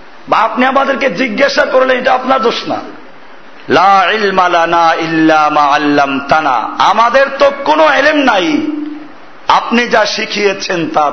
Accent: native